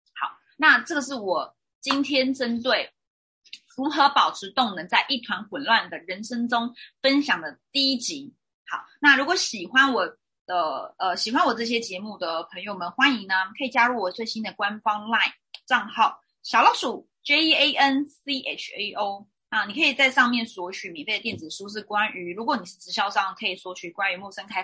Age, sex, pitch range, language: 20-39, female, 185-265 Hz, Chinese